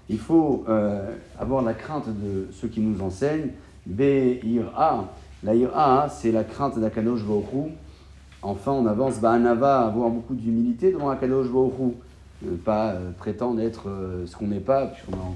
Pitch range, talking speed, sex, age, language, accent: 100-130 Hz, 155 wpm, male, 30-49, French, French